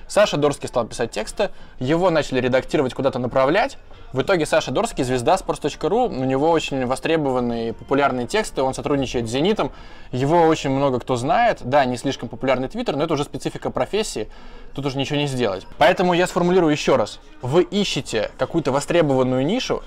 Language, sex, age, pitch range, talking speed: Russian, male, 20-39, 130-170 Hz, 170 wpm